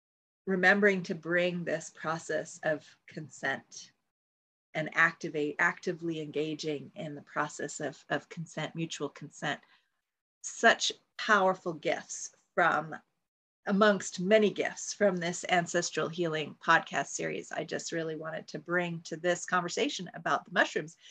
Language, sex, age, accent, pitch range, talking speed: English, female, 30-49, American, 155-200 Hz, 125 wpm